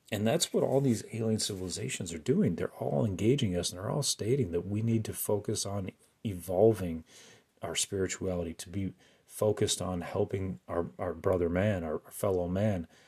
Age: 30-49